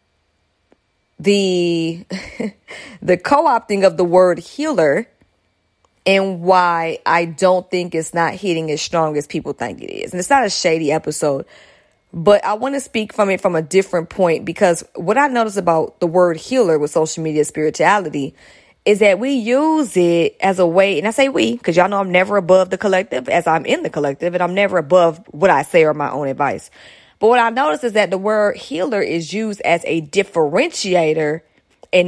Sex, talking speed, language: female, 195 wpm, English